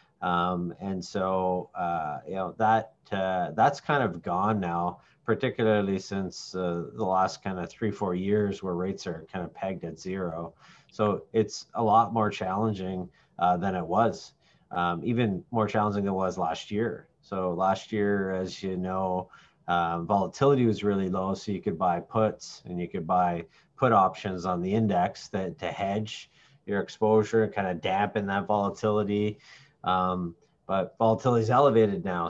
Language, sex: English, male